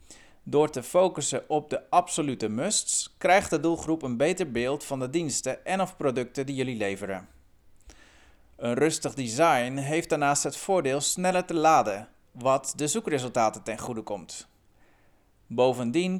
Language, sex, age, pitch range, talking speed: Dutch, male, 40-59, 110-160 Hz, 145 wpm